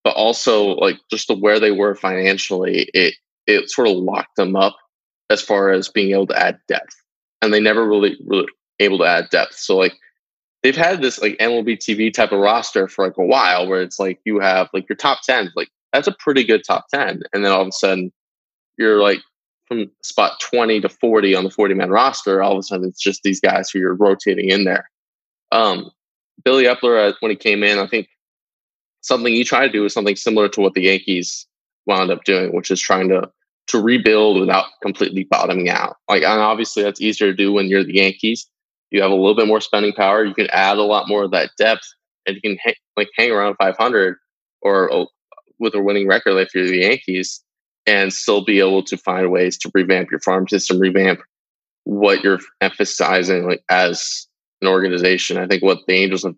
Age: 20-39